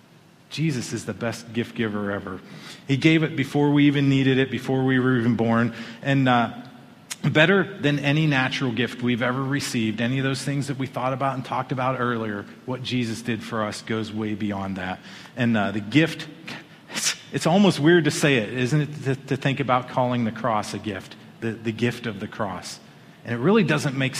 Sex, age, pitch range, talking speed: male, 40-59, 120-155 Hz, 205 wpm